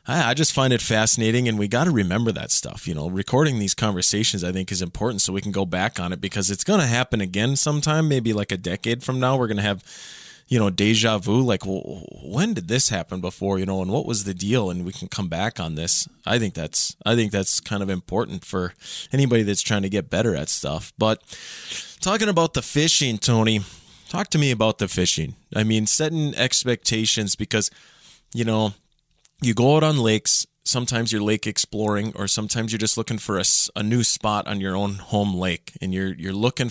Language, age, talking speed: English, 20-39, 215 wpm